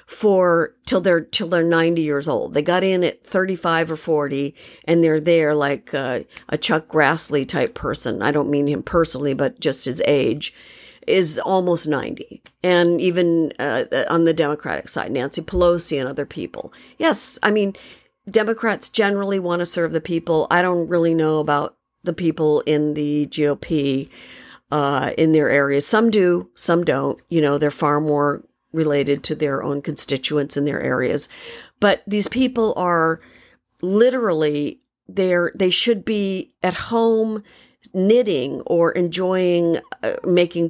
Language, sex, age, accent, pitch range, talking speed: English, female, 50-69, American, 150-180 Hz, 155 wpm